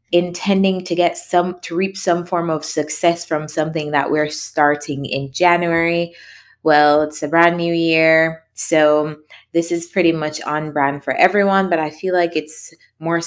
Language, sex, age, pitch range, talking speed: English, female, 20-39, 145-175 Hz, 170 wpm